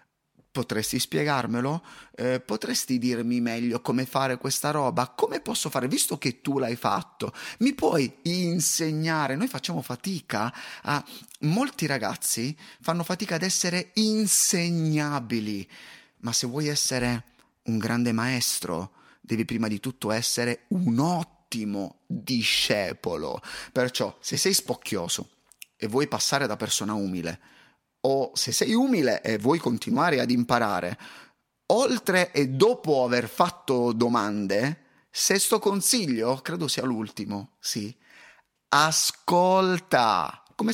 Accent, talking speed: native, 115 wpm